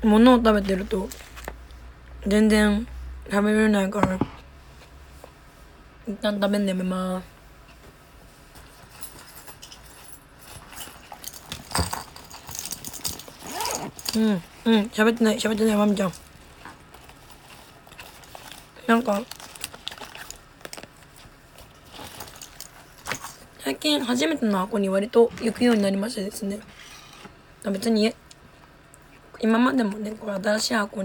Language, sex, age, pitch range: Japanese, female, 20-39, 190-225 Hz